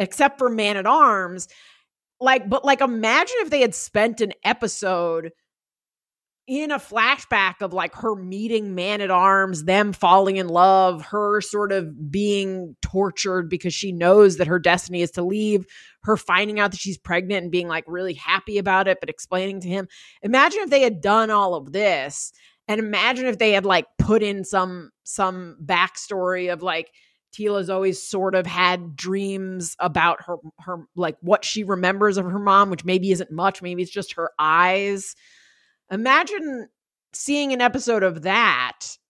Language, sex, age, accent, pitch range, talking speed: English, female, 30-49, American, 180-215 Hz, 170 wpm